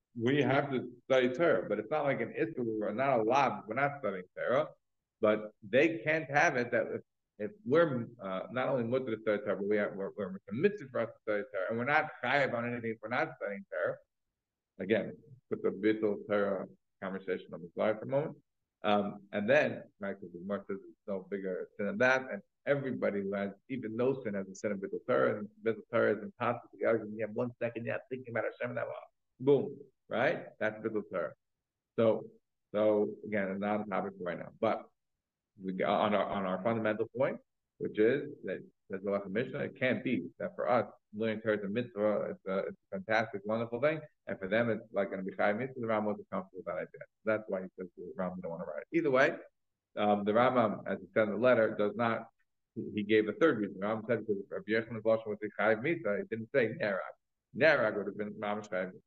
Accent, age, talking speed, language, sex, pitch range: American, 50-69, 220 wpm, English, male, 100-120 Hz